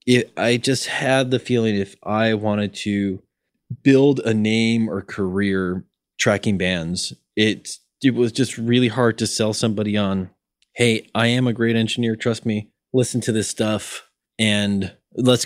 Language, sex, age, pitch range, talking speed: English, male, 20-39, 100-120 Hz, 160 wpm